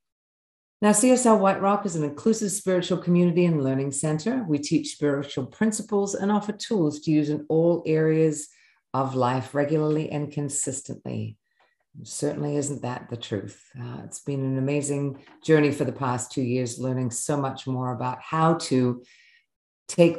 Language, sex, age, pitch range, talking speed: English, female, 50-69, 130-170 Hz, 160 wpm